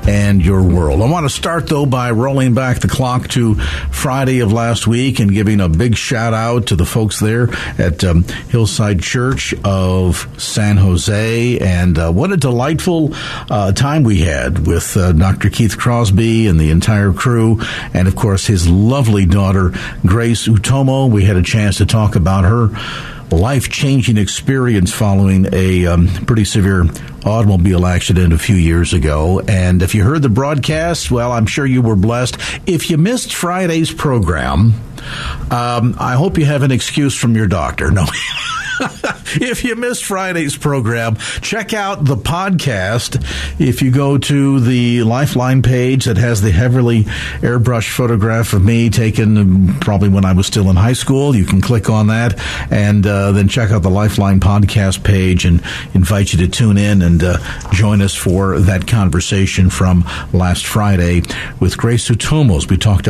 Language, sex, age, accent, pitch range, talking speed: English, male, 50-69, American, 95-125 Hz, 170 wpm